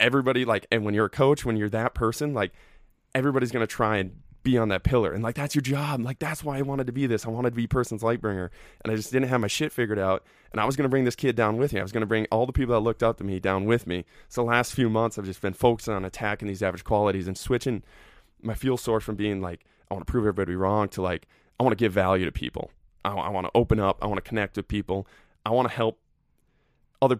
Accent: American